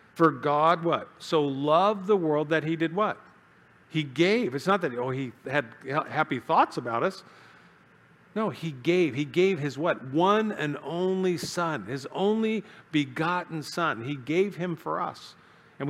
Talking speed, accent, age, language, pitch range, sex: 165 wpm, American, 50-69, English, 145-180 Hz, male